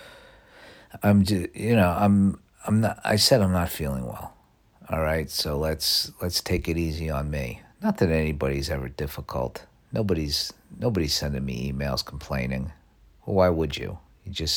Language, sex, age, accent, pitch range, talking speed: English, male, 50-69, American, 75-95 Hz, 165 wpm